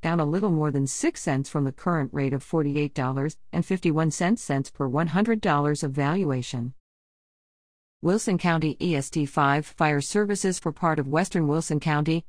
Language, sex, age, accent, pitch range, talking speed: English, female, 50-69, American, 150-215 Hz, 140 wpm